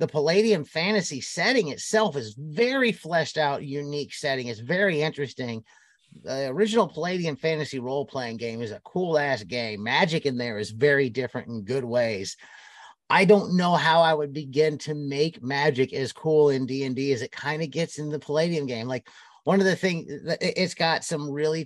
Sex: male